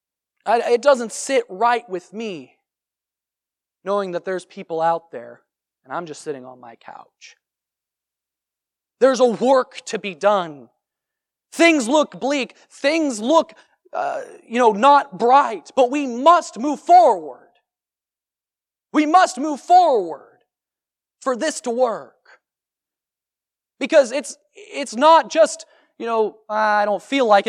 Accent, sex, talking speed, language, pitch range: American, male, 130 wpm, English, 245-325 Hz